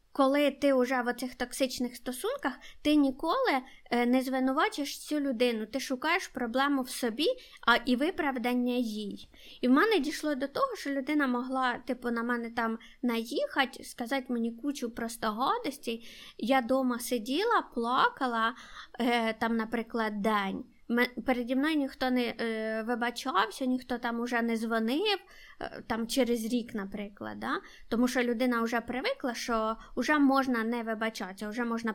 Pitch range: 230-270 Hz